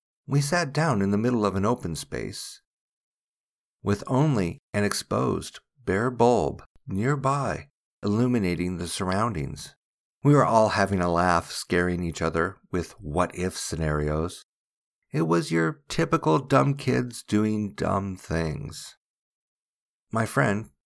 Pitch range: 90-125 Hz